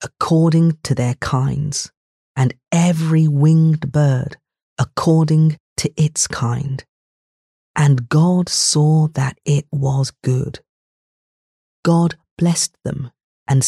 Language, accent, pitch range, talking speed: English, British, 130-155 Hz, 100 wpm